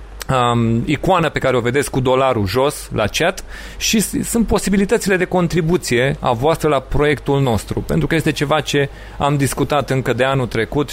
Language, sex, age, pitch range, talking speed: Romanian, male, 30-49, 120-155 Hz, 170 wpm